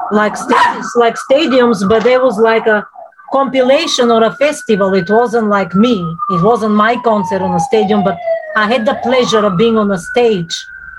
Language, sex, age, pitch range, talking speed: English, female, 40-59, 195-285 Hz, 185 wpm